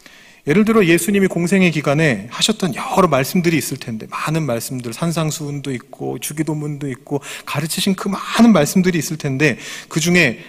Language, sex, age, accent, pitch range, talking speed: English, male, 40-59, Korean, 120-175 Hz, 135 wpm